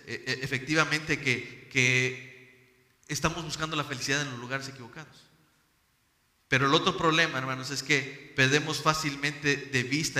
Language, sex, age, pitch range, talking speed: Spanish, male, 40-59, 130-155 Hz, 130 wpm